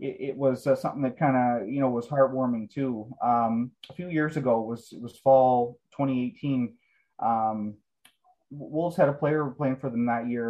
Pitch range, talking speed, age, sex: 110-130 Hz, 195 wpm, 30-49, male